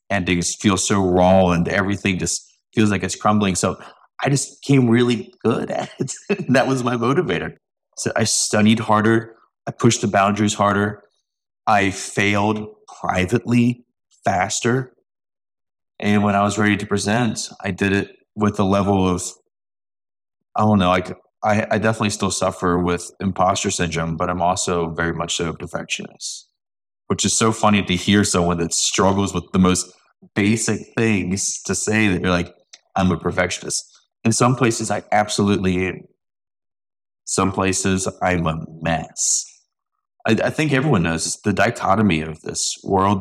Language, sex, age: English, male, 20-39